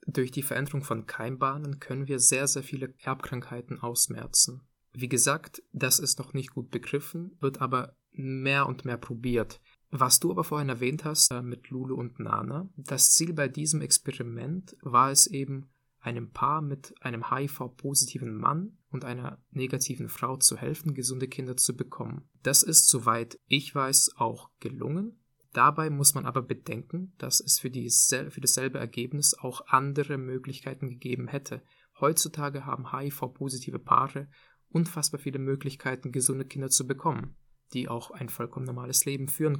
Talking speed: 150 wpm